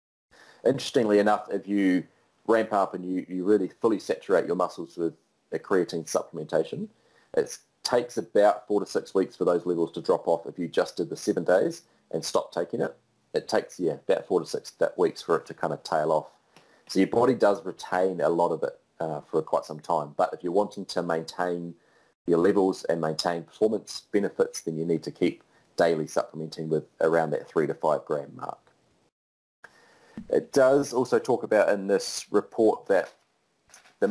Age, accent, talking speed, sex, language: 30-49, Australian, 190 wpm, male, English